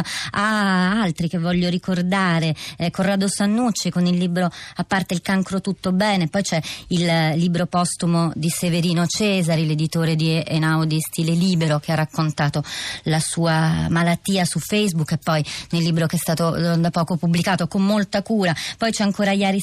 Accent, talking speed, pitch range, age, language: native, 170 wpm, 165-195 Hz, 30-49, Italian